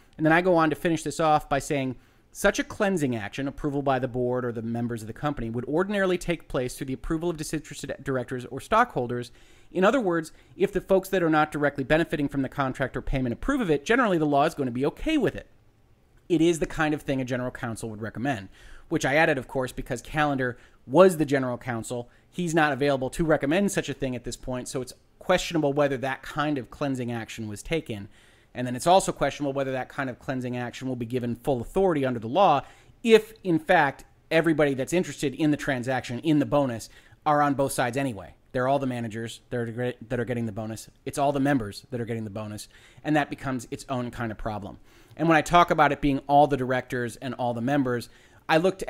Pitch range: 120-155 Hz